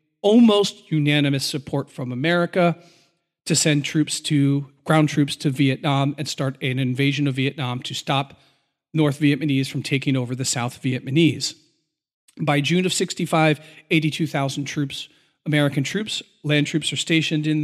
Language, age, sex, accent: English, 40-59, male, American